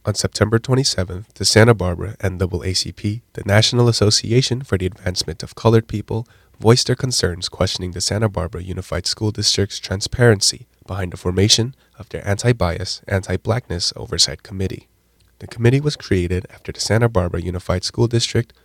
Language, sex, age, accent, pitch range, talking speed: English, male, 20-39, American, 90-115 Hz, 160 wpm